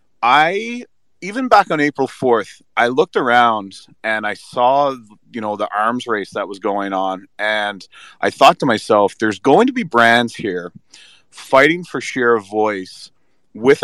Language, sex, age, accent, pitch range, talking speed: English, male, 30-49, American, 100-120 Hz, 165 wpm